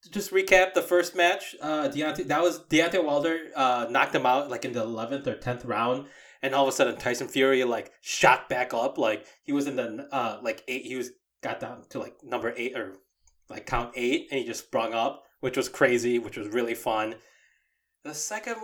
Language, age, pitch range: English, 20-39, 120-175 Hz